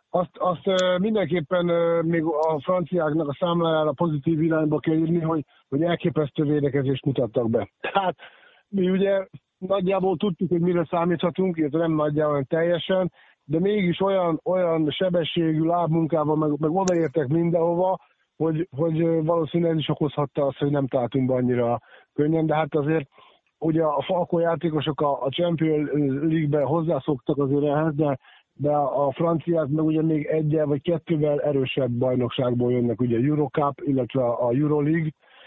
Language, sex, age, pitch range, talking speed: Hungarian, male, 50-69, 145-175 Hz, 140 wpm